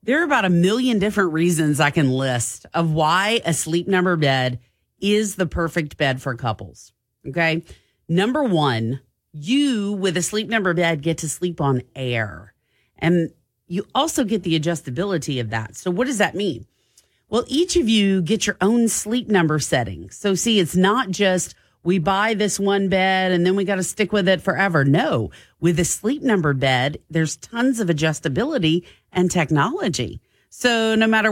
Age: 40-59